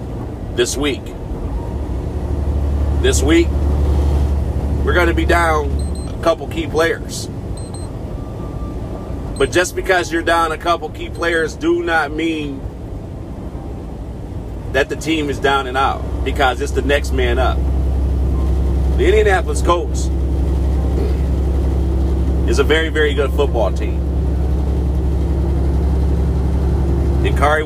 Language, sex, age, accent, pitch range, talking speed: English, male, 40-59, American, 70-90 Hz, 105 wpm